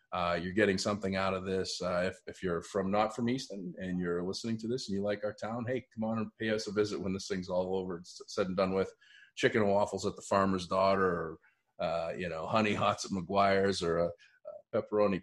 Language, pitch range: English, 85-95 Hz